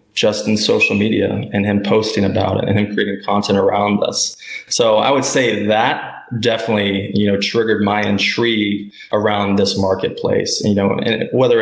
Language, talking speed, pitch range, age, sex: English, 170 wpm, 100-115 Hz, 20-39, male